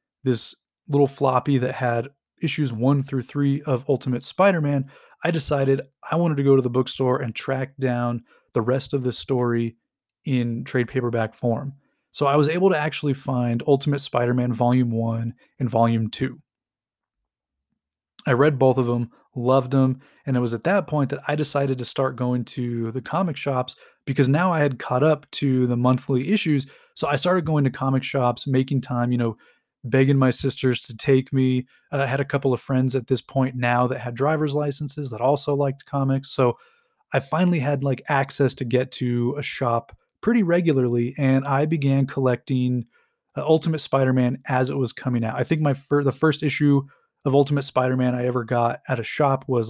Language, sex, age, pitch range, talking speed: English, male, 20-39, 125-145 Hz, 190 wpm